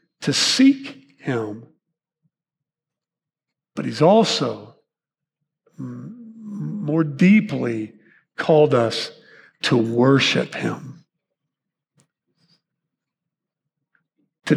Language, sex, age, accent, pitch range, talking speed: English, male, 50-69, American, 145-185 Hz, 60 wpm